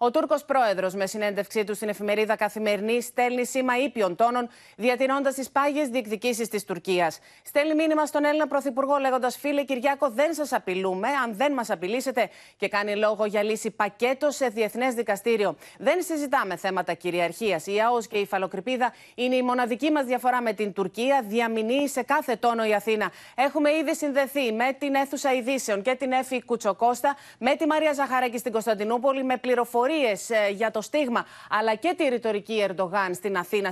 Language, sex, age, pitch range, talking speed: Greek, female, 30-49, 200-265 Hz, 165 wpm